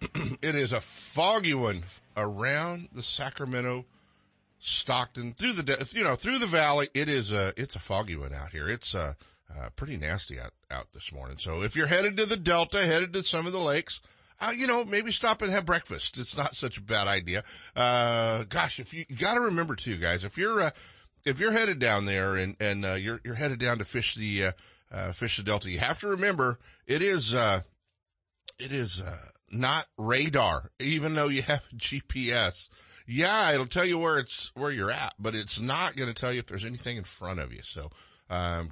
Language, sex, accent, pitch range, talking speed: English, male, American, 95-145 Hz, 210 wpm